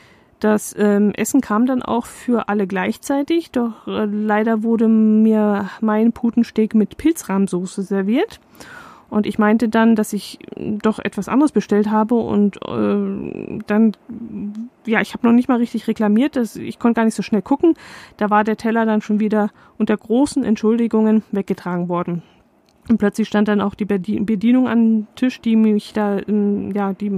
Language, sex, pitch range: German, female, 205-230 Hz